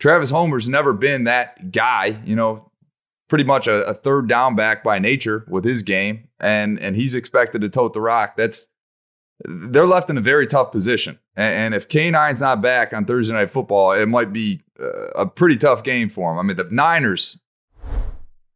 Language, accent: English, American